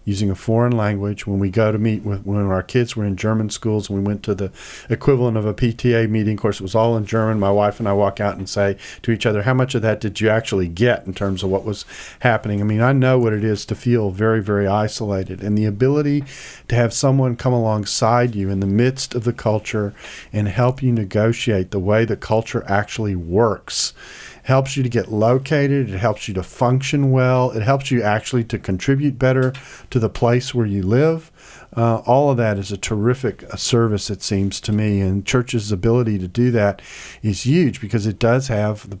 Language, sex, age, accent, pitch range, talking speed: English, male, 40-59, American, 100-125 Hz, 225 wpm